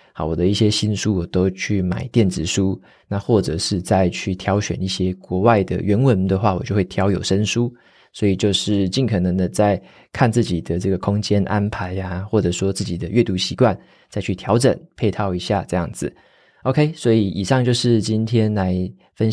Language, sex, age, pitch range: Chinese, male, 20-39, 95-120 Hz